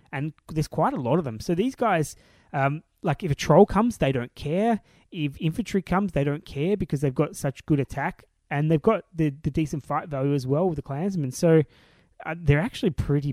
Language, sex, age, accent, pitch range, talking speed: English, male, 20-39, Australian, 140-175 Hz, 220 wpm